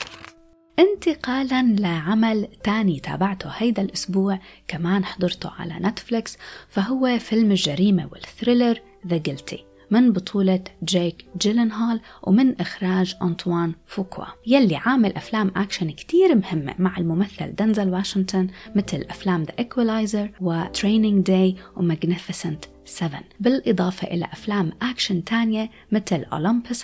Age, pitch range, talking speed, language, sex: 20-39, 175-230 Hz, 110 wpm, Arabic, female